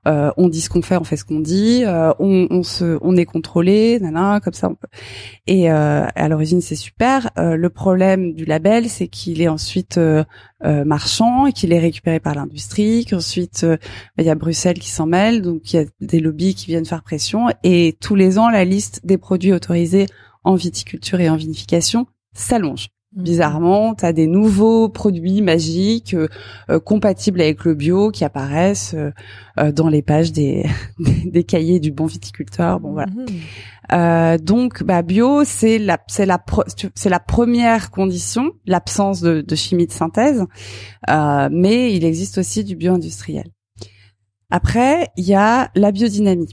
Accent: French